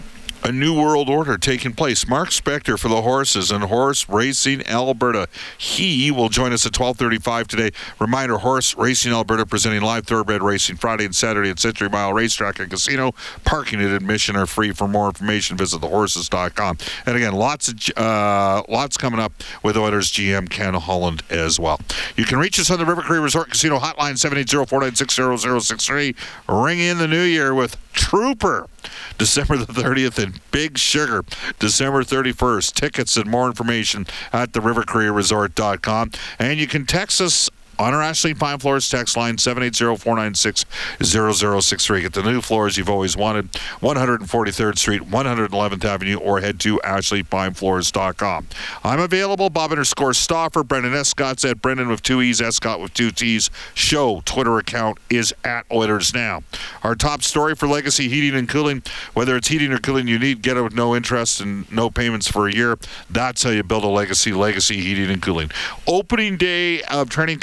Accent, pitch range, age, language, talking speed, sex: American, 105-135 Hz, 50-69, English, 170 wpm, male